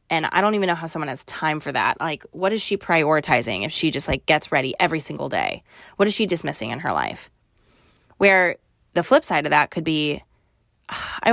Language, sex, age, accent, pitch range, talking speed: English, female, 20-39, American, 155-195 Hz, 215 wpm